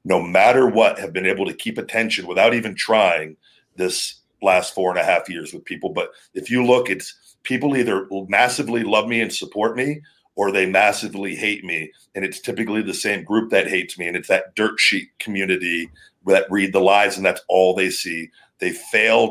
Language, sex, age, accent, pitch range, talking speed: English, male, 40-59, American, 95-120 Hz, 200 wpm